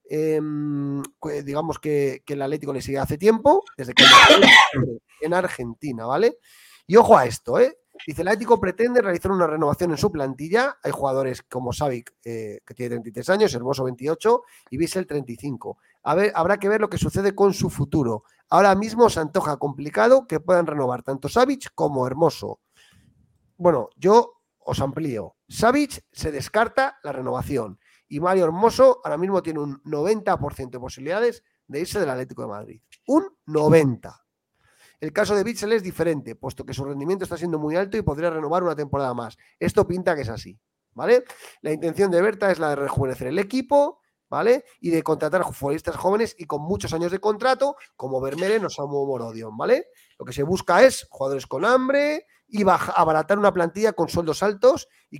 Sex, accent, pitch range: male, Spanish, 145-220 Hz